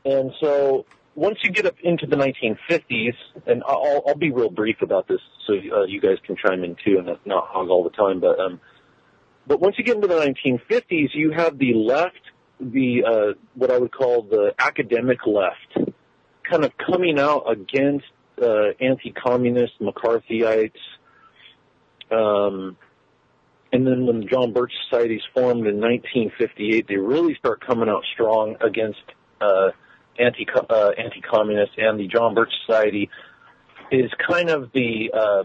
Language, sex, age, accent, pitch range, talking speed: English, male, 40-59, American, 115-170 Hz, 165 wpm